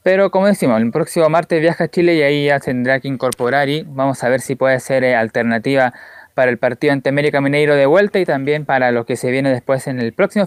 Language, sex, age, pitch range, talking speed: Spanish, male, 20-39, 135-170 Hz, 245 wpm